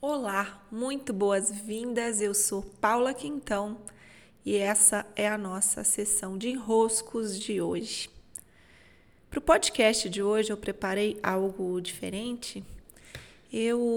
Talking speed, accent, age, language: 115 wpm, Brazilian, 20-39, Portuguese